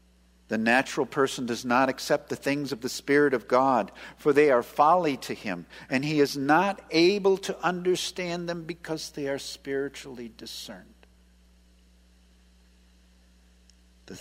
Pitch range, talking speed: 90-120 Hz, 140 wpm